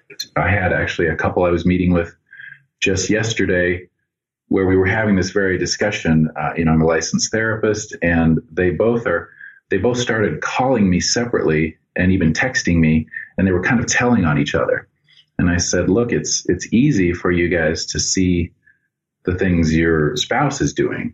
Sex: male